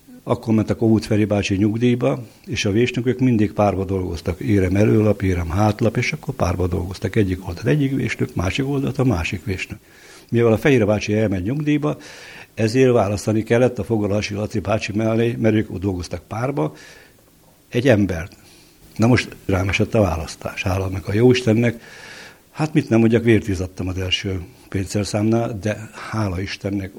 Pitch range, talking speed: 100-115 Hz, 160 wpm